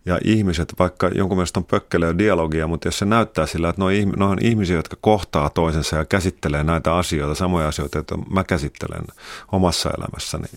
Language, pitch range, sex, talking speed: Finnish, 80-95 Hz, male, 180 wpm